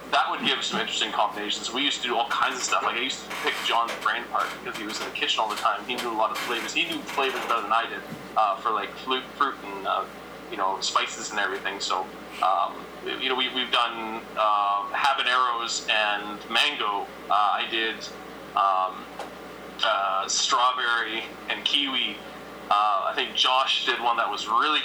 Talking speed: 200 wpm